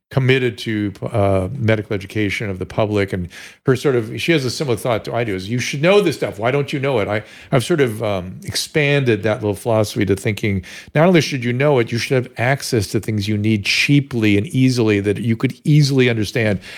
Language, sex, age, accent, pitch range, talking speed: English, male, 50-69, American, 100-125 Hz, 230 wpm